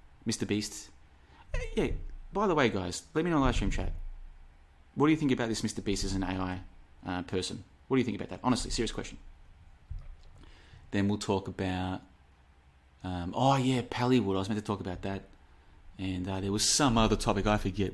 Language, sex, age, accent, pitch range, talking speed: English, male, 30-49, Australian, 90-115 Hz, 205 wpm